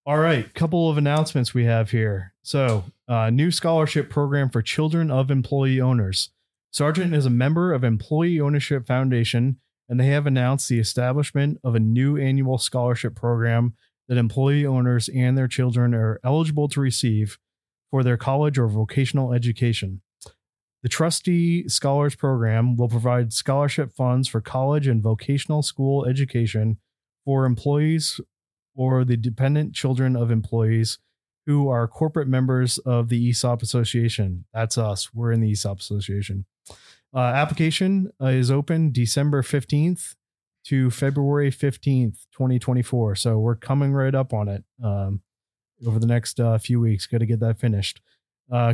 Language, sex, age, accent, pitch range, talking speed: English, male, 20-39, American, 115-140 Hz, 150 wpm